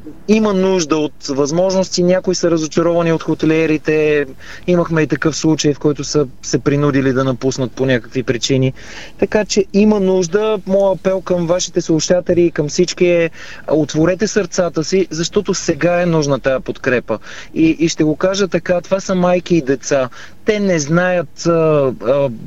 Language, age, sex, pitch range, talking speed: Bulgarian, 30-49, male, 150-180 Hz, 160 wpm